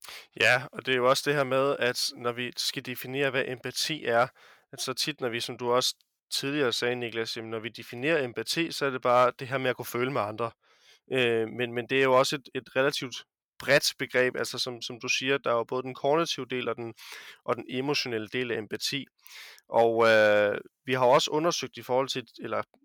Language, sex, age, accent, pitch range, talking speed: Danish, male, 20-39, native, 120-140 Hz, 225 wpm